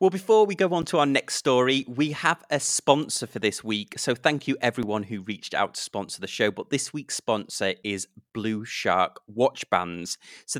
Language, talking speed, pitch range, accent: English, 210 wpm, 105-140 Hz, British